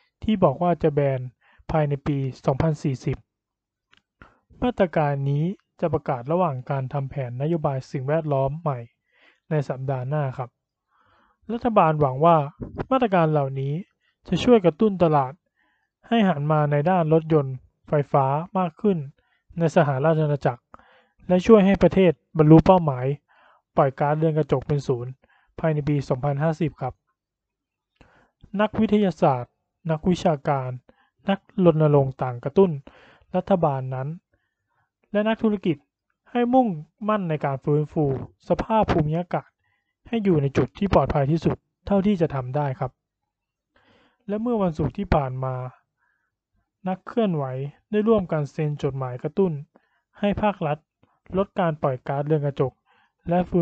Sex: male